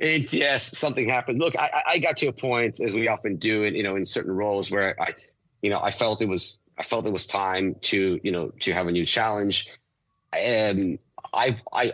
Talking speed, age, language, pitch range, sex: 225 wpm, 30-49, English, 85-105 Hz, male